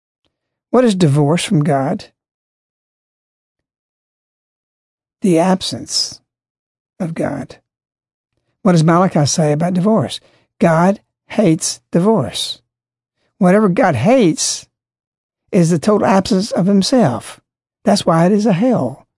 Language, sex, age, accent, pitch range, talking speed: English, male, 60-79, American, 150-195 Hz, 105 wpm